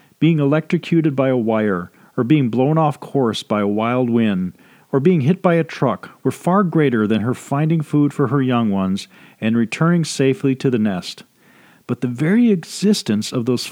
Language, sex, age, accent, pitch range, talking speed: English, male, 40-59, American, 115-160 Hz, 190 wpm